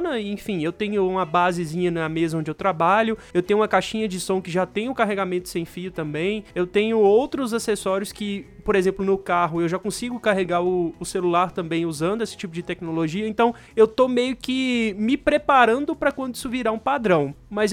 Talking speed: 205 wpm